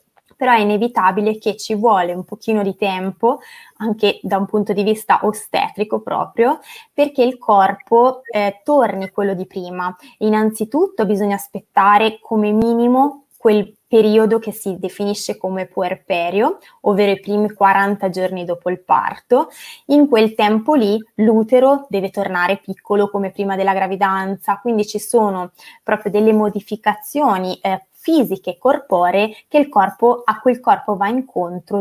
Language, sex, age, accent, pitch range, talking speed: Italian, female, 20-39, native, 195-230 Hz, 140 wpm